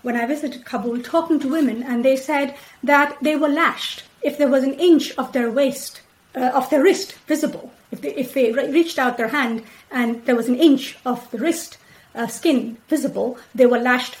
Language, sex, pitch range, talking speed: English, female, 240-285 Hz, 210 wpm